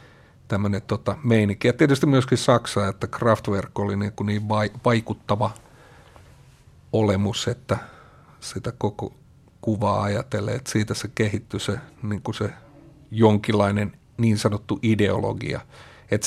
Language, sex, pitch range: Finnish, male, 105-125 Hz